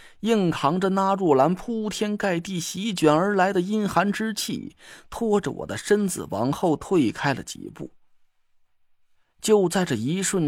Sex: male